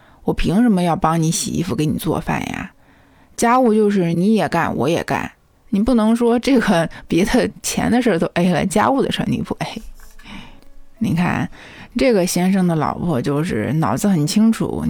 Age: 20-39